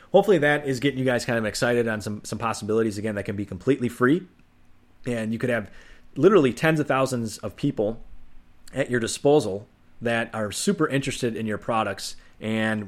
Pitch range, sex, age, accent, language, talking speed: 105-125 Hz, male, 30-49, American, English, 185 wpm